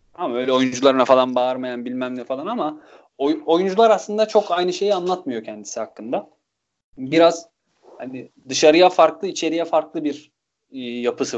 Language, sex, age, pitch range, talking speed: Turkish, male, 30-49, 125-165 Hz, 135 wpm